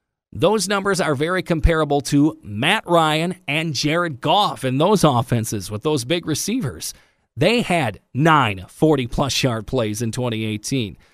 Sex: male